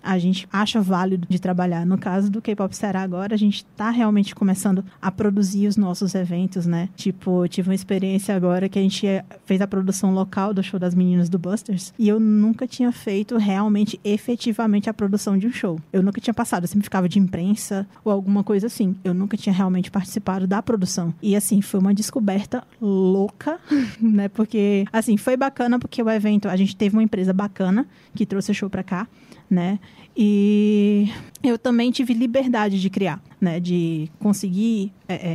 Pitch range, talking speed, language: 190-220 Hz, 185 wpm, Portuguese